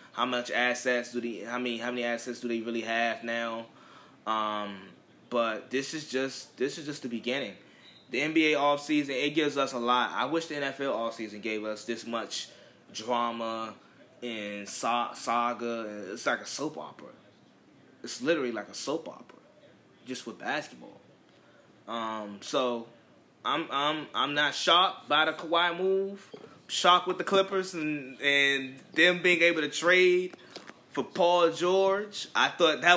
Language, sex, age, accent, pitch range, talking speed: English, male, 20-39, American, 120-165 Hz, 160 wpm